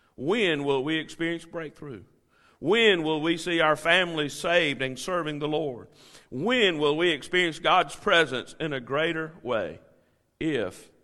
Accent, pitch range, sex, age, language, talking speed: American, 130-165 Hz, male, 50-69, English, 145 wpm